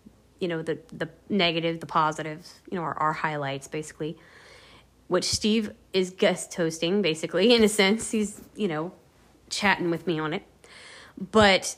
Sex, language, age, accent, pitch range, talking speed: female, English, 30-49, American, 165-195 Hz, 160 wpm